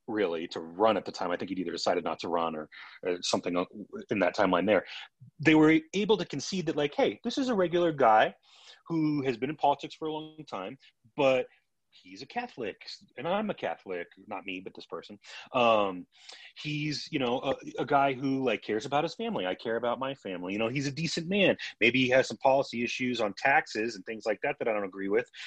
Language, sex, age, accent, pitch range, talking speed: English, male, 30-49, American, 110-155 Hz, 230 wpm